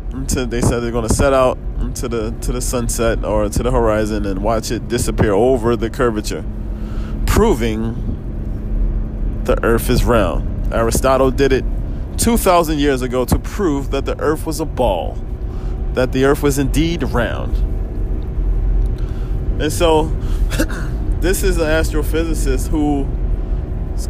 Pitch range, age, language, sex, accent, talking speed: 115-155 Hz, 20-39, English, male, American, 135 wpm